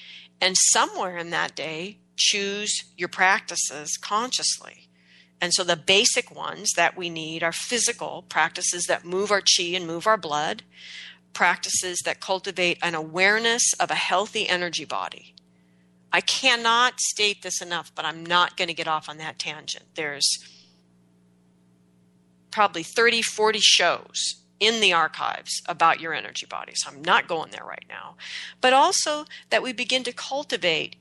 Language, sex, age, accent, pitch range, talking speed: English, female, 40-59, American, 155-215 Hz, 155 wpm